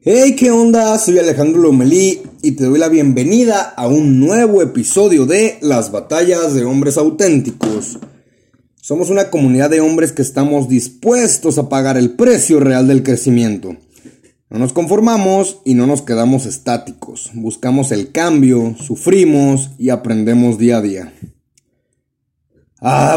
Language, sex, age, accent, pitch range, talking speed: Spanish, male, 30-49, Mexican, 120-155 Hz, 140 wpm